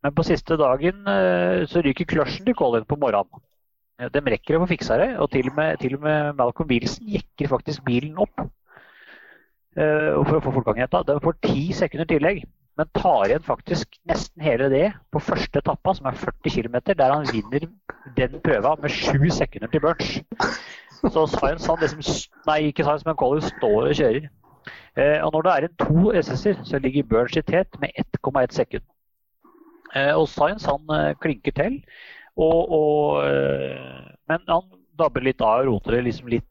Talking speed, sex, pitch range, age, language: 185 wpm, male, 125-165 Hz, 30-49, English